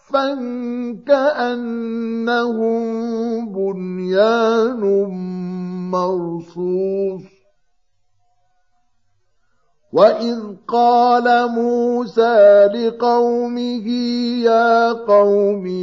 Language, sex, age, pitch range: Arabic, male, 50-69, 185-230 Hz